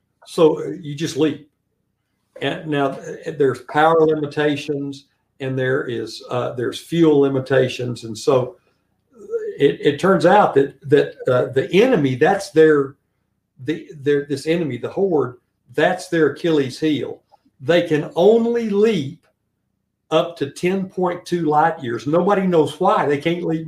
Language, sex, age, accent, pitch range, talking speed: English, male, 60-79, American, 140-175 Hz, 135 wpm